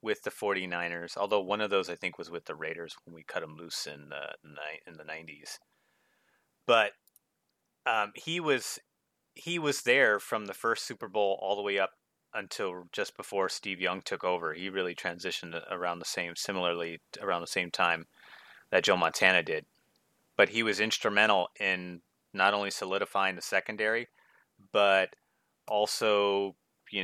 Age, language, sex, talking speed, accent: 30-49, English, male, 165 wpm, American